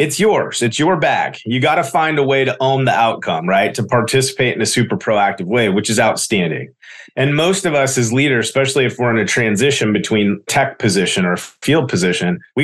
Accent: American